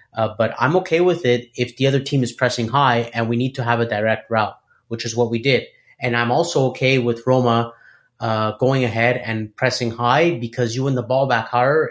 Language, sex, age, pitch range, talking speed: English, male, 30-49, 115-125 Hz, 225 wpm